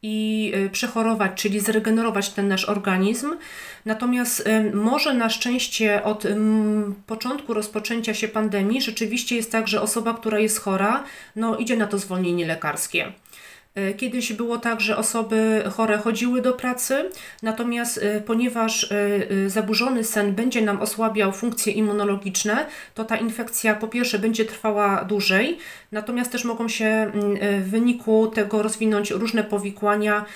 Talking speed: 135 wpm